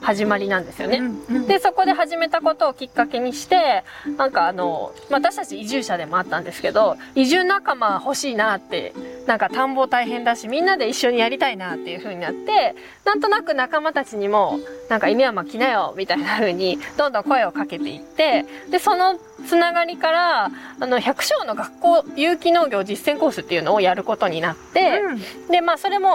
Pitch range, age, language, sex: 210-320 Hz, 20-39, Japanese, female